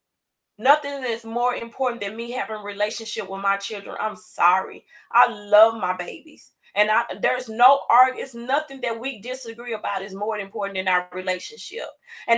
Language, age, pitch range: English, 30-49, 230-275 Hz